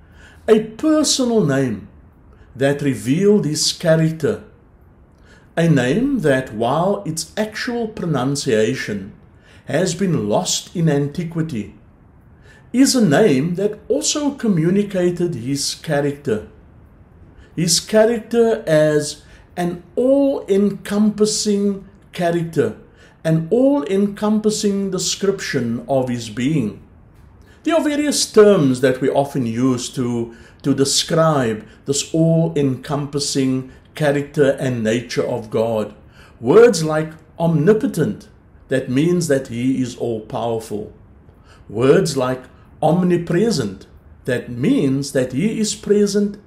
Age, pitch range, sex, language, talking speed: 60-79, 125-200 Hz, male, English, 95 wpm